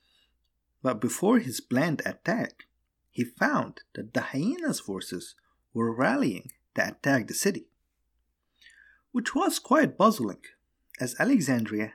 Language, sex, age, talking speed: English, male, 50-69, 115 wpm